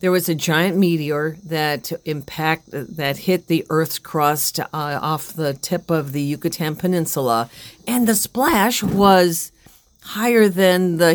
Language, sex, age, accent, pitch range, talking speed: English, female, 50-69, American, 145-175 Hz, 145 wpm